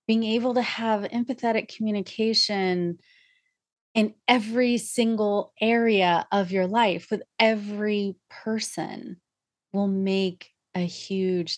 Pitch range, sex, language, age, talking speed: 170-215 Hz, female, English, 30-49, 105 wpm